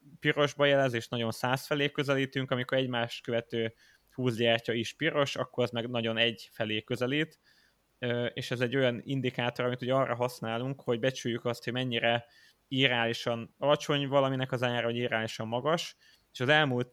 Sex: male